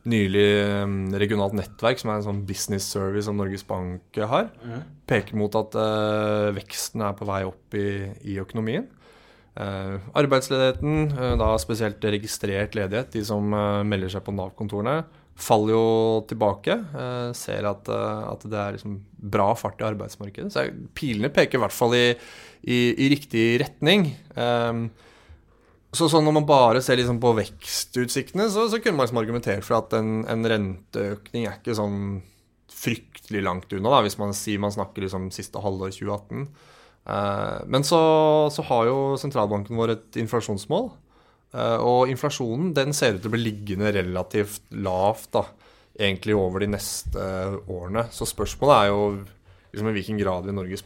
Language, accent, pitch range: English, Norwegian, 100-120 Hz